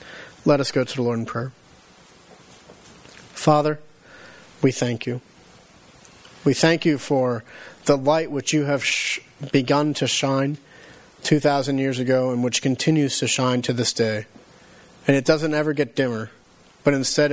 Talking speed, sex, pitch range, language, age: 150 wpm, male, 120-145 Hz, English, 40-59